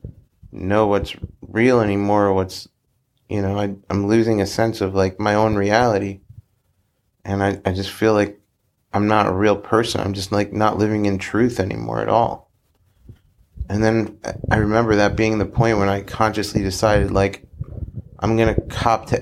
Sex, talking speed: male, 175 wpm